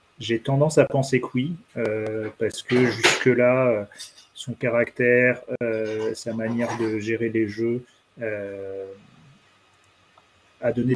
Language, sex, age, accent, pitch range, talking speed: French, male, 30-49, French, 115-135 Hz, 125 wpm